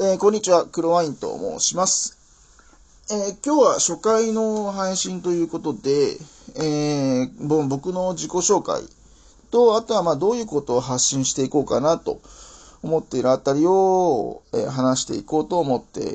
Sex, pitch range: male, 145-220 Hz